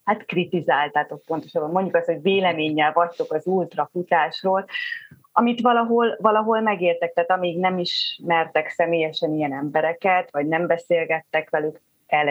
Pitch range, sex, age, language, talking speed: 160-195 Hz, female, 30-49, Hungarian, 130 wpm